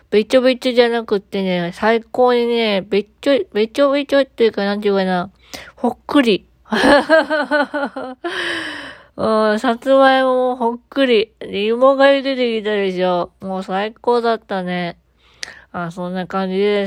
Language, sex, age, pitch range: Japanese, female, 20-39, 185-245 Hz